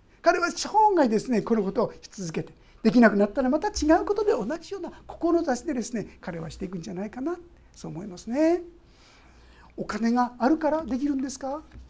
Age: 60-79